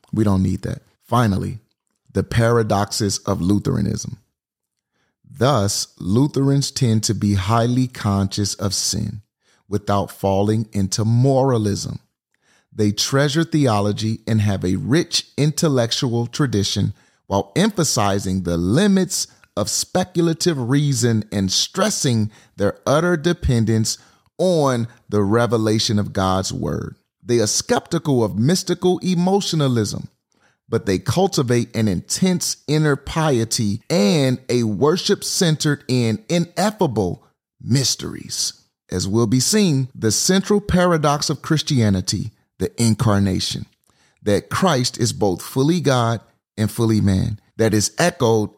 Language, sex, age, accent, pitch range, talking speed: English, male, 30-49, American, 105-140 Hz, 115 wpm